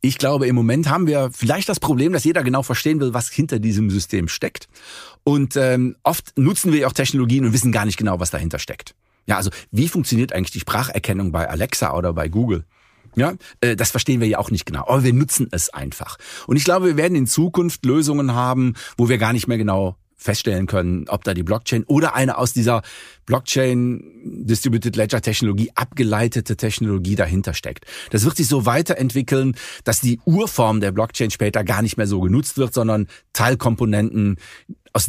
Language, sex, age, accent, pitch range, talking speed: German, male, 40-59, German, 100-130 Hz, 190 wpm